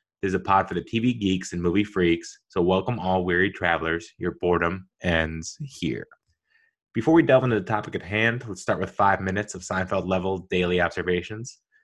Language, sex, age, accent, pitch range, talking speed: English, male, 20-39, American, 95-125 Hz, 190 wpm